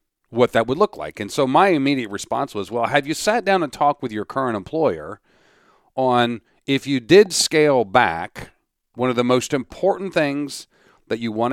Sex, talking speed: male, 195 wpm